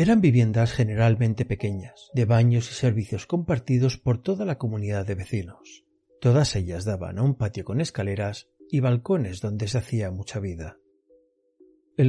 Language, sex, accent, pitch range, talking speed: Spanish, male, Spanish, 105-150 Hz, 155 wpm